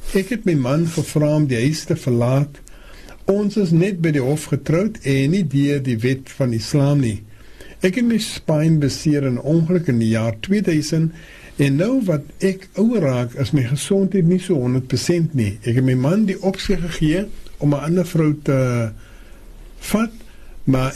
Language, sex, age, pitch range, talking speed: English, male, 60-79, 130-185 Hz, 180 wpm